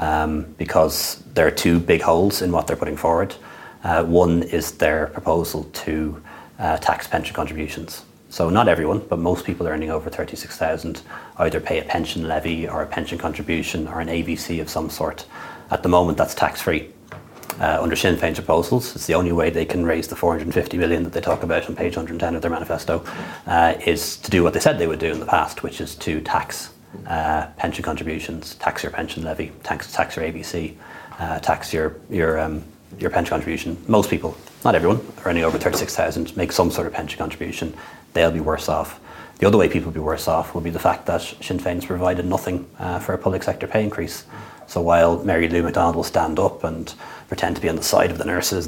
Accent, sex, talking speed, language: Irish, male, 215 wpm, English